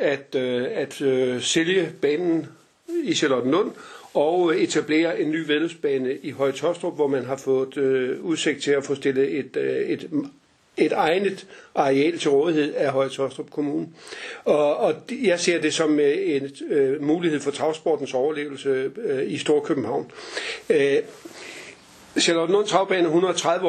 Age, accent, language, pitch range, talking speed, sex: 60-79, native, Danish, 140-200 Hz, 135 wpm, male